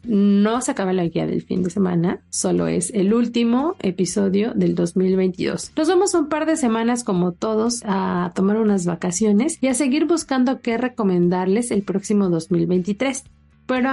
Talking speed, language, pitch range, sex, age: 165 wpm, Spanish, 195-235 Hz, female, 40-59